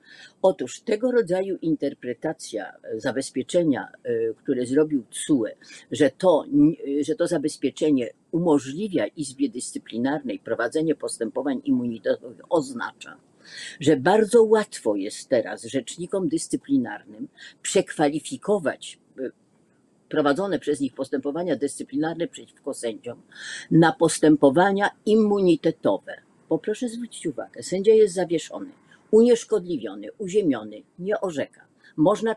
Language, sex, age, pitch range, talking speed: Polish, female, 50-69, 145-220 Hz, 90 wpm